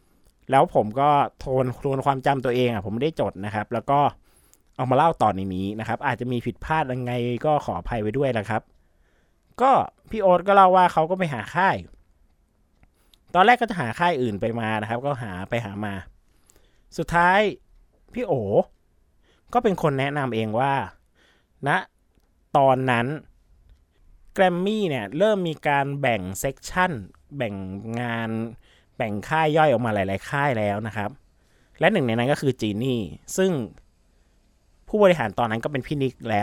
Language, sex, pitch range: Thai, male, 100-145 Hz